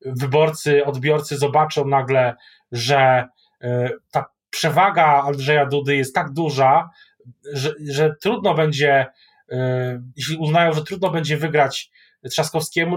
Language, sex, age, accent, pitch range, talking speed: Polish, male, 20-39, native, 140-170 Hz, 105 wpm